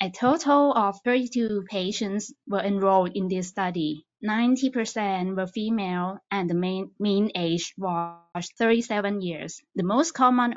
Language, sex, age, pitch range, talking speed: English, female, 20-39, 185-235 Hz, 135 wpm